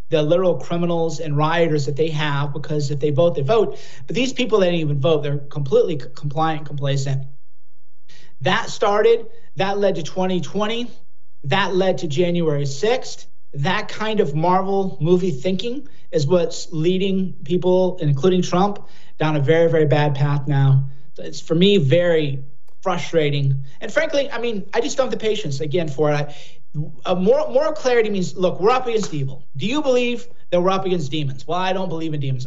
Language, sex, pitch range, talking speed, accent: English, male, 155-210 Hz, 180 wpm, American